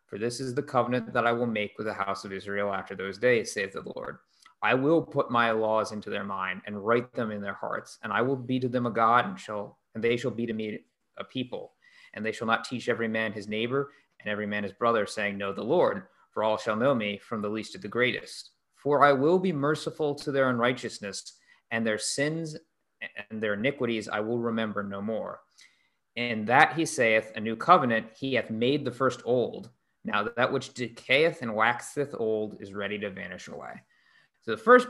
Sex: male